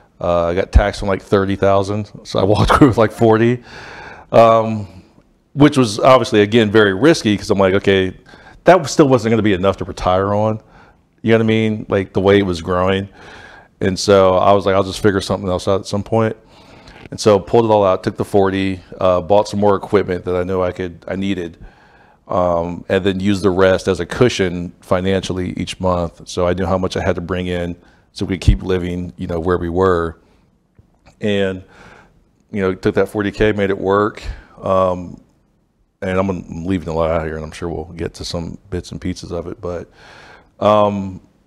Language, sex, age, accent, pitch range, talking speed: English, male, 40-59, American, 90-105 Hz, 210 wpm